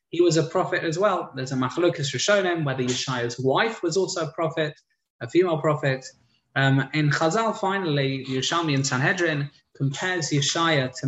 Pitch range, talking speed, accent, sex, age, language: 125-155 Hz, 175 wpm, British, male, 20-39, English